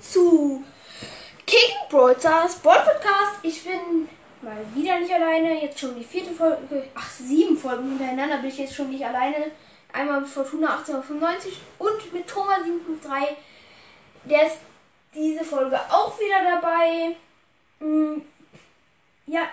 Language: German